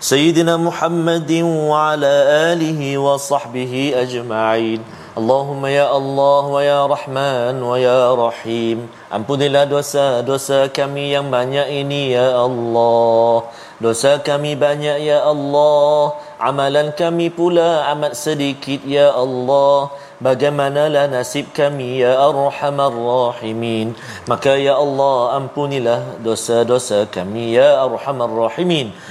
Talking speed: 110 wpm